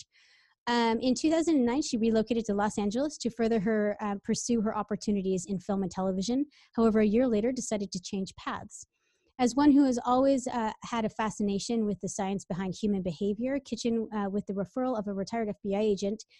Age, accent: 30-49, American